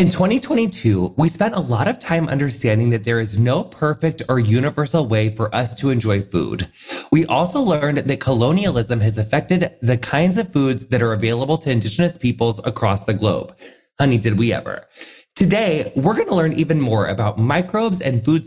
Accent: American